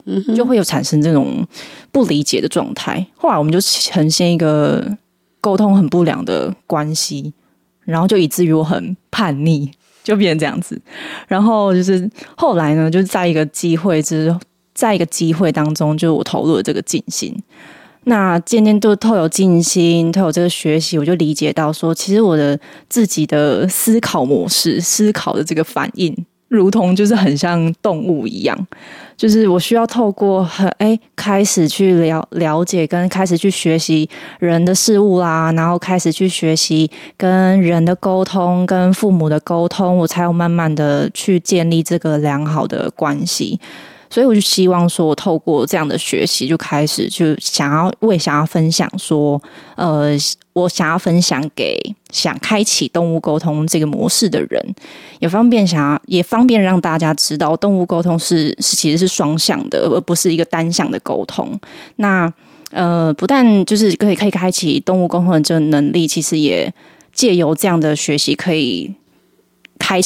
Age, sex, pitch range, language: 20-39, female, 160-195 Hz, Chinese